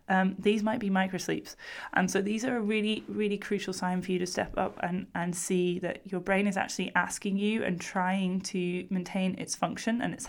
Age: 20-39